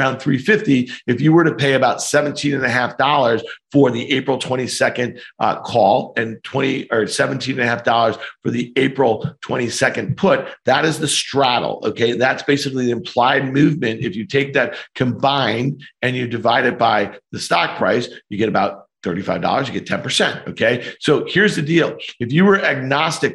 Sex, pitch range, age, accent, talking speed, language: male, 120-140 Hz, 50-69, American, 180 wpm, English